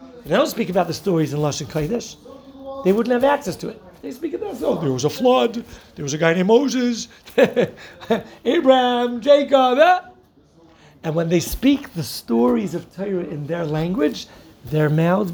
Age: 60-79